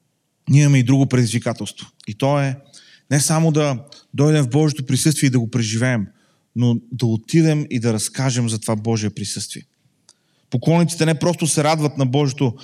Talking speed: 170 wpm